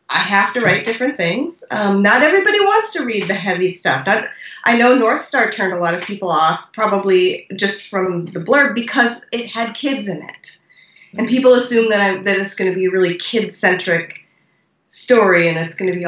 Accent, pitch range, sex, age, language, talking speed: American, 170-225 Hz, female, 30-49, English, 200 wpm